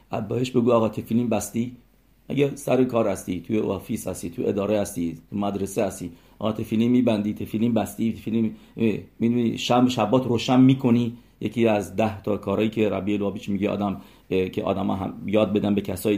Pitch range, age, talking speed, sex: 105-125 Hz, 50-69, 180 wpm, male